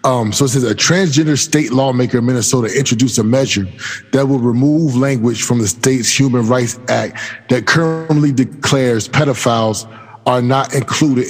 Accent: American